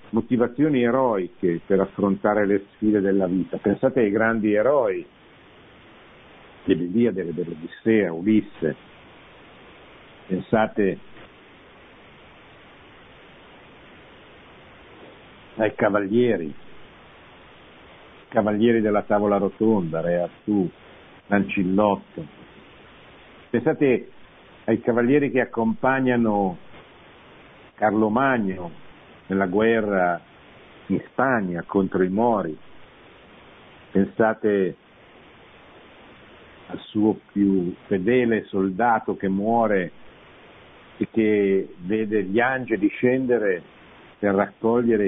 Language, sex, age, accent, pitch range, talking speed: Italian, male, 60-79, native, 95-115 Hz, 75 wpm